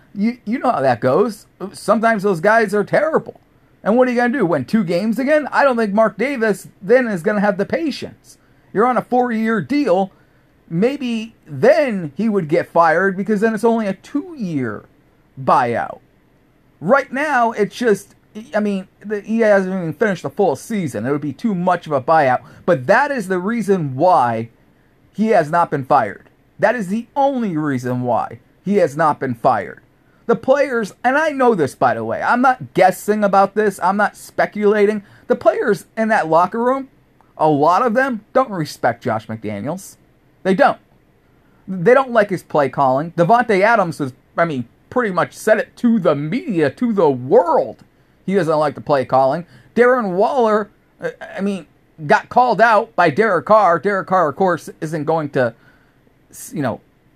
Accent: American